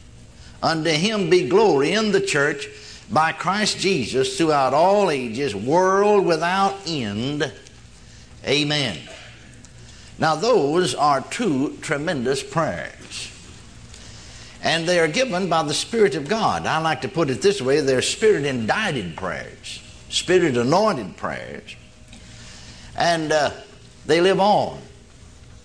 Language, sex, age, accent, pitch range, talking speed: English, male, 60-79, American, 125-180 Hz, 115 wpm